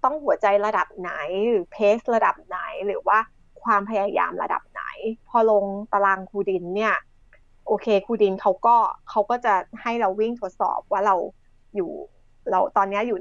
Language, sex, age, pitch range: Thai, female, 20-39, 195-230 Hz